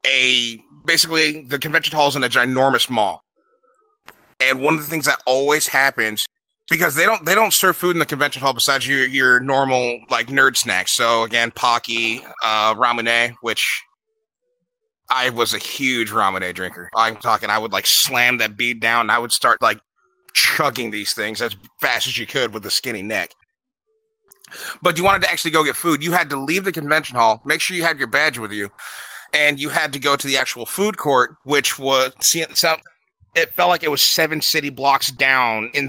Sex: male